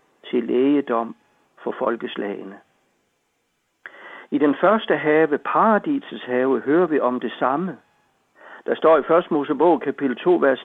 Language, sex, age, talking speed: Danish, male, 60-79, 125 wpm